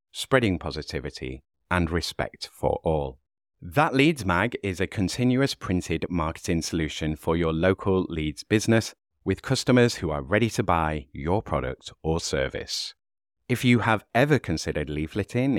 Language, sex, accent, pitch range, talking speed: English, male, British, 80-120 Hz, 140 wpm